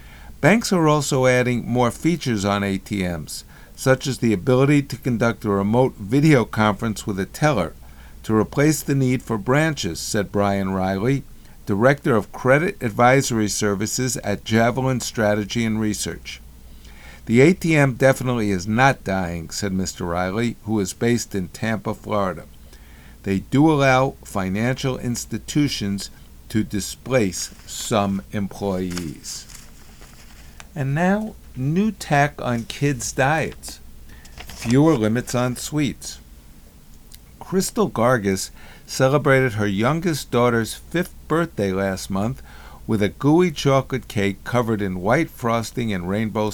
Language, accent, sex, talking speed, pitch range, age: English, American, male, 125 wpm, 95-130 Hz, 50-69